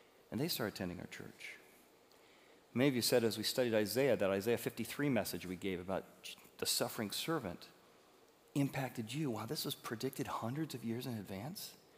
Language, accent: English, American